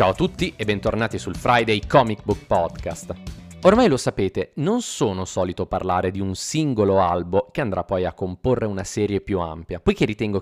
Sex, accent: male, native